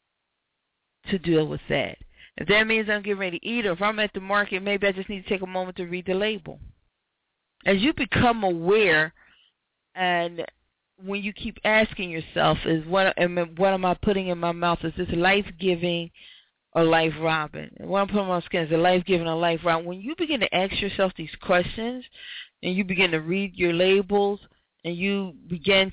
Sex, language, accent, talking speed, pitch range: female, English, American, 195 wpm, 170-205 Hz